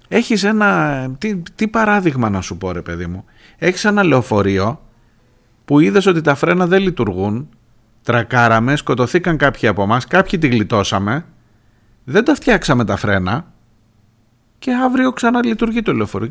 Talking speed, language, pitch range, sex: 145 wpm, Greek, 110-155 Hz, male